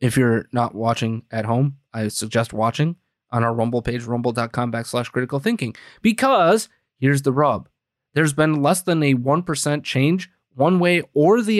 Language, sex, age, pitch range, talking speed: English, male, 20-39, 120-145 Hz, 165 wpm